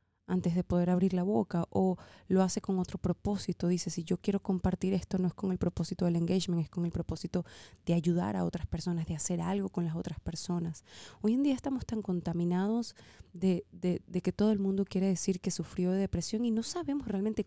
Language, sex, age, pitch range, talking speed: Spanish, female, 20-39, 175-220 Hz, 220 wpm